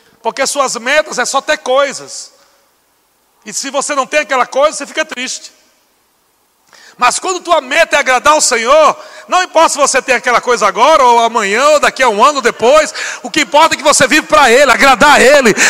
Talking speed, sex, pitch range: 205 wpm, male, 235-315 Hz